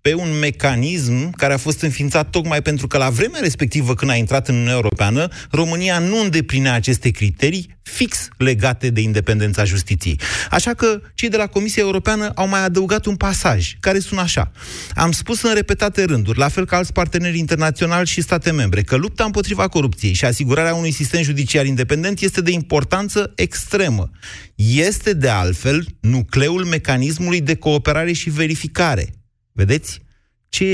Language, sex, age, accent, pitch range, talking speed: Romanian, male, 30-49, native, 115-165 Hz, 160 wpm